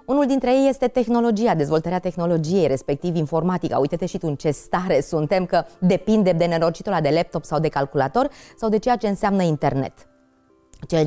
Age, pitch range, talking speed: 20-39, 145-190 Hz, 175 wpm